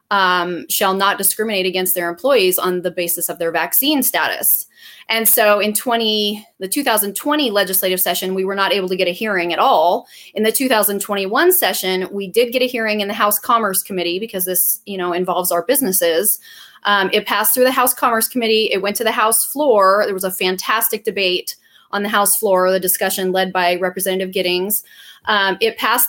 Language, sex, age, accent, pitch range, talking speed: English, female, 30-49, American, 185-225 Hz, 195 wpm